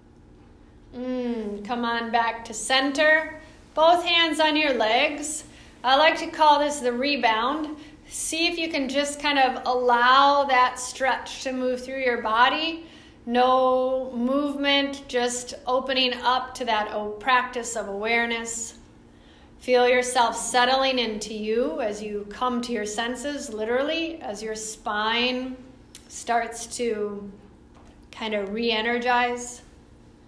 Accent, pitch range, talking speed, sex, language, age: American, 235-275 Hz, 125 wpm, female, English, 40-59